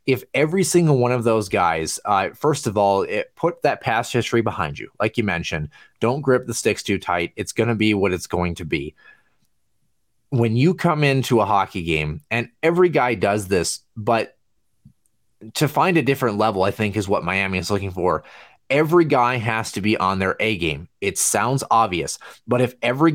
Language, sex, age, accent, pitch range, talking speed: English, male, 30-49, American, 100-125 Hz, 195 wpm